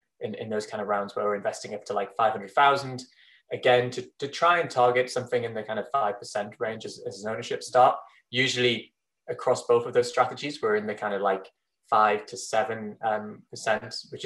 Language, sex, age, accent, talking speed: English, male, 20-39, British, 200 wpm